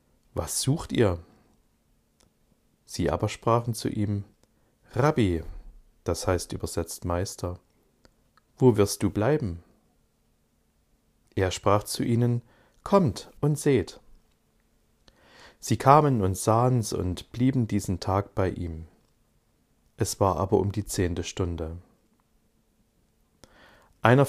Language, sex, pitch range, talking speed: German, male, 90-115 Hz, 105 wpm